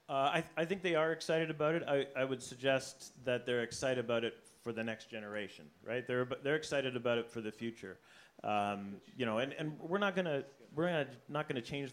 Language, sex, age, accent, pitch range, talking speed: English, male, 40-59, American, 110-135 Hz, 235 wpm